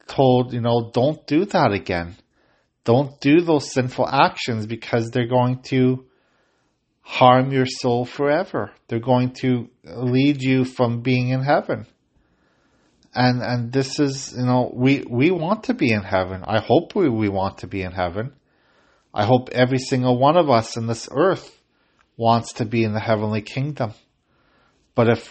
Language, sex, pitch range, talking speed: English, male, 115-130 Hz, 165 wpm